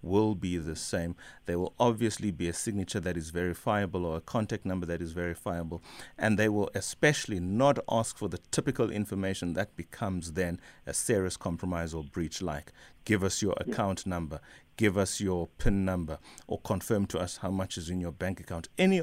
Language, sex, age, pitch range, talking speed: English, male, 30-49, 90-115 Hz, 190 wpm